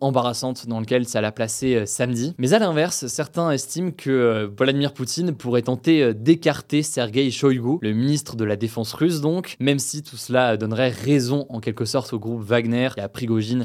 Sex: male